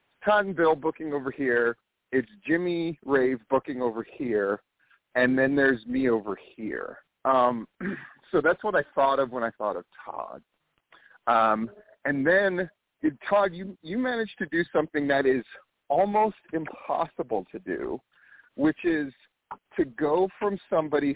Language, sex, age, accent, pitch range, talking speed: English, male, 40-59, American, 130-195 Hz, 145 wpm